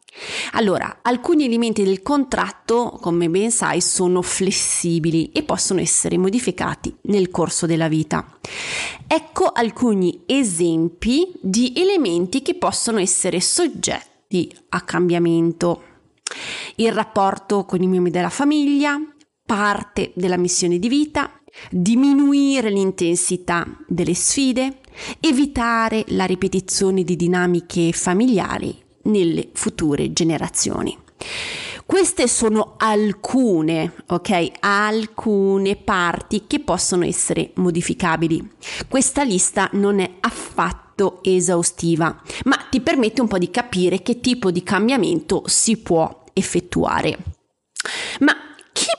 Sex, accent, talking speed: female, native, 105 wpm